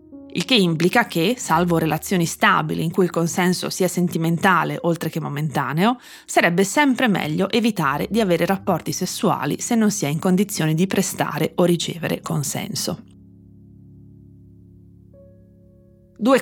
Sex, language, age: female, Italian, 30-49